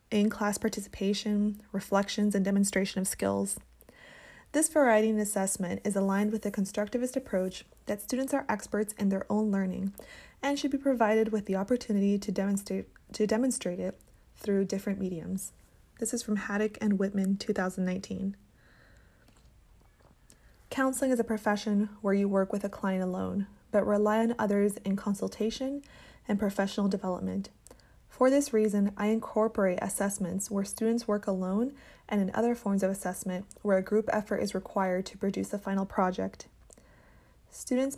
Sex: female